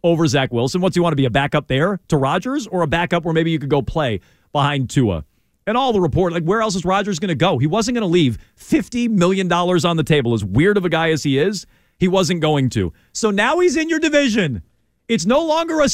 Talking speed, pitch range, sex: 255 wpm, 165-245 Hz, male